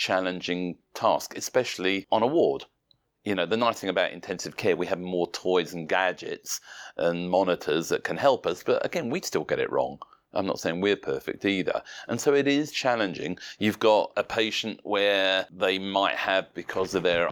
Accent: British